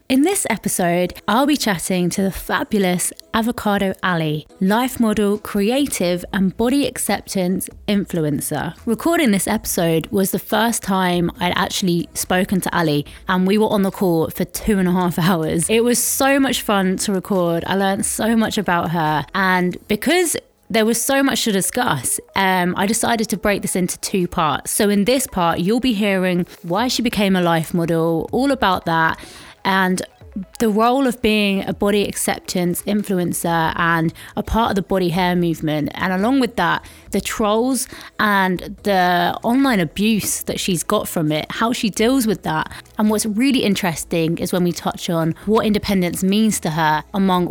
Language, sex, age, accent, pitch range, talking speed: English, female, 20-39, British, 170-220 Hz, 175 wpm